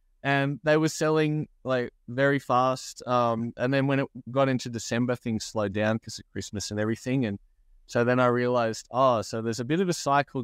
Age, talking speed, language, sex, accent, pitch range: 20-39, 205 wpm, English, male, Australian, 105-135 Hz